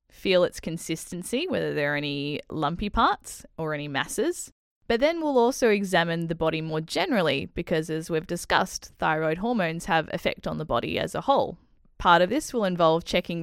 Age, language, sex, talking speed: 10-29, English, female, 185 wpm